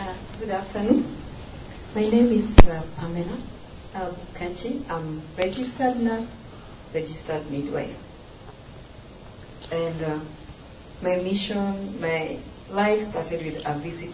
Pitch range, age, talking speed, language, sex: 150-180 Hz, 40-59, 100 wpm, English, female